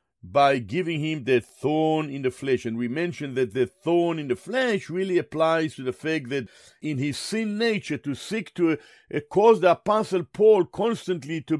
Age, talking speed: 50-69, 190 wpm